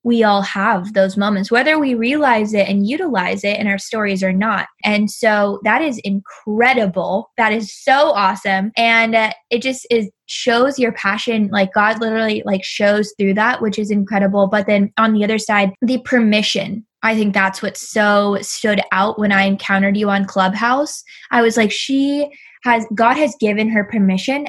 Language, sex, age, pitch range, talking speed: English, female, 10-29, 205-245 Hz, 185 wpm